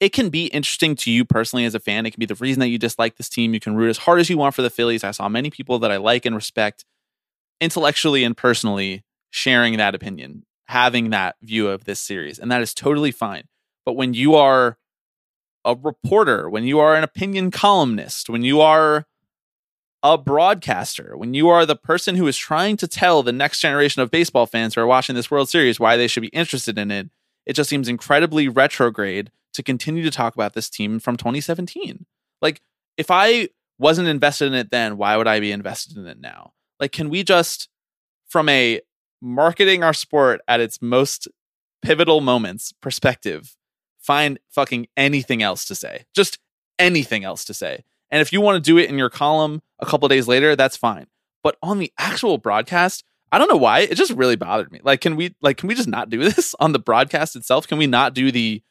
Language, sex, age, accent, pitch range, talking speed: English, male, 20-39, American, 120-155 Hz, 215 wpm